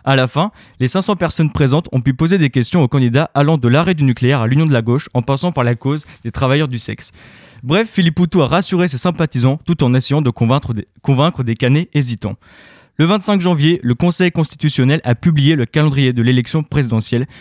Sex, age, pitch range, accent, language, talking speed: male, 20-39, 125-160 Hz, French, French, 215 wpm